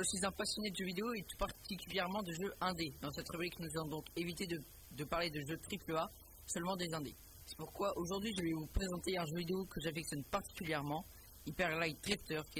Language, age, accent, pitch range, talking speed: French, 40-59, French, 140-185 Hz, 220 wpm